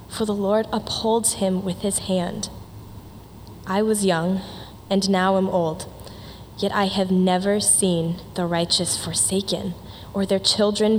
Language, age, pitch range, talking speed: English, 10-29, 165-195 Hz, 140 wpm